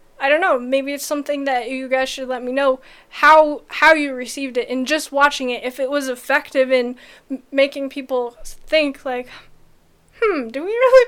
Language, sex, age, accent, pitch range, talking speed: English, female, 10-29, American, 260-315 Hz, 195 wpm